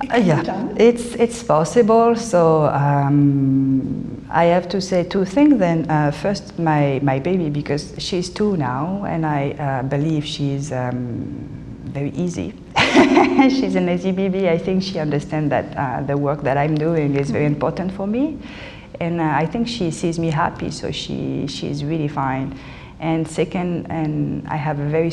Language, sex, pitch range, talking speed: English, female, 145-175 Hz, 165 wpm